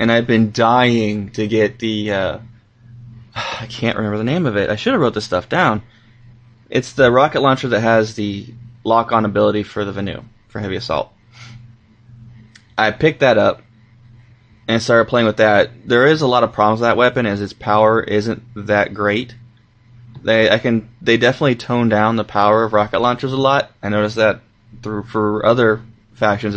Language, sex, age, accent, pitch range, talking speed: English, male, 20-39, American, 105-125 Hz, 185 wpm